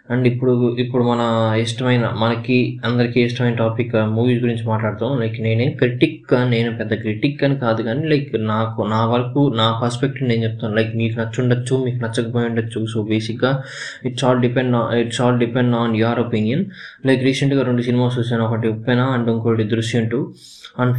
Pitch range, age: 115-125 Hz, 20-39